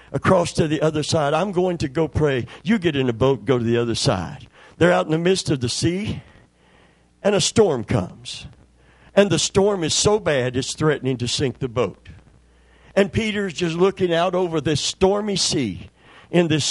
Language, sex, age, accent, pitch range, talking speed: English, male, 50-69, American, 130-190 Hz, 200 wpm